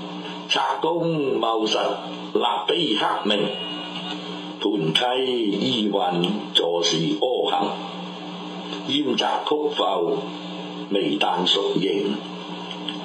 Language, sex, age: Chinese, male, 60-79